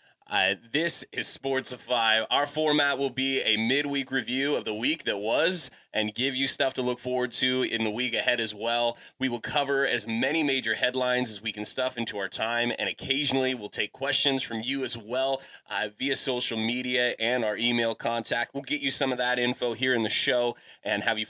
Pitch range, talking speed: 110-135 Hz, 210 wpm